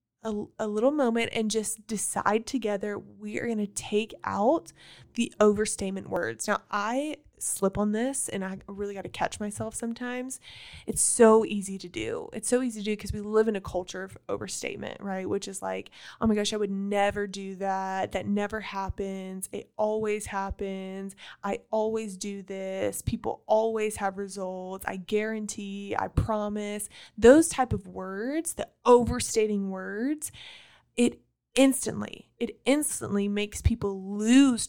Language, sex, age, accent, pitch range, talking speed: English, female, 20-39, American, 200-230 Hz, 160 wpm